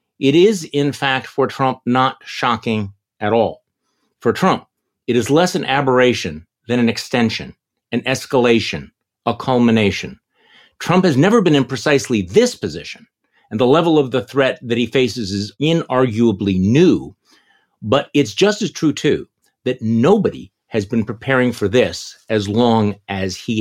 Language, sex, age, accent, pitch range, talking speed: English, male, 50-69, American, 105-130 Hz, 155 wpm